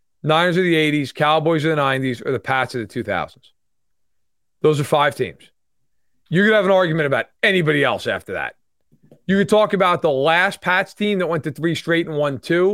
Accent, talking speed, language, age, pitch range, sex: American, 205 wpm, English, 30-49, 145-185 Hz, male